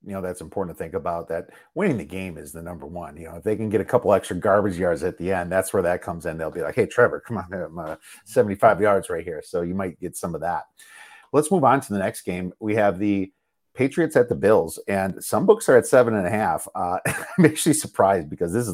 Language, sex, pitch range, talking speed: English, male, 90-135 Hz, 265 wpm